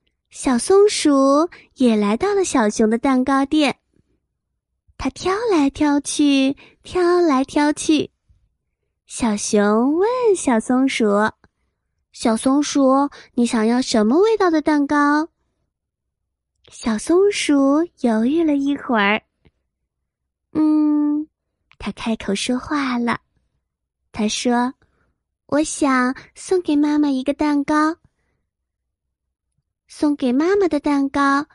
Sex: female